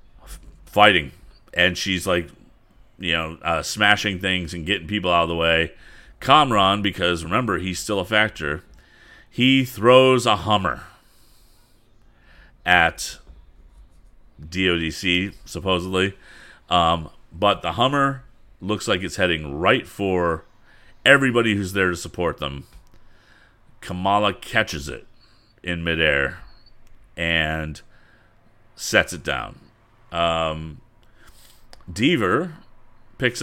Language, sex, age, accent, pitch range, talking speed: English, male, 40-59, American, 85-110 Hz, 105 wpm